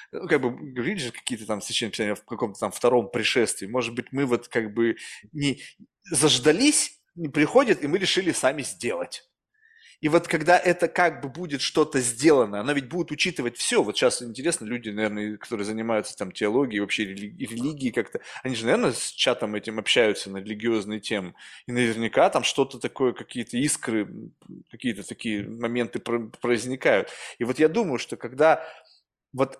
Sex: male